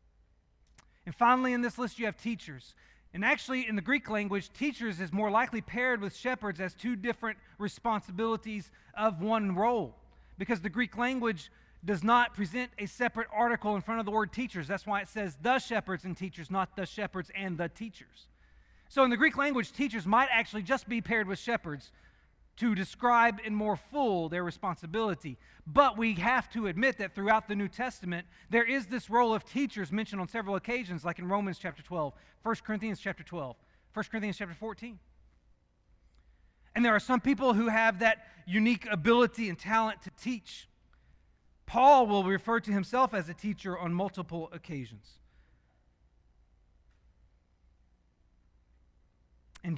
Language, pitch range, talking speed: English, 165-230 Hz, 165 wpm